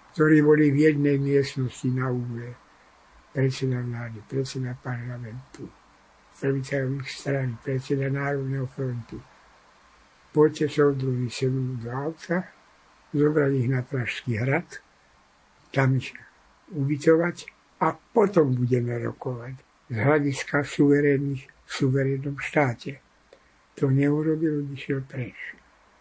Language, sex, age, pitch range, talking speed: Slovak, male, 60-79, 130-150 Hz, 100 wpm